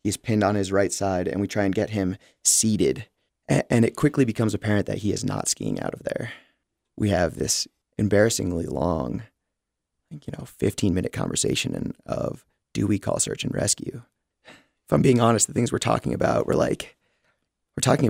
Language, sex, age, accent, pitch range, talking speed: English, male, 30-49, American, 100-110 Hz, 190 wpm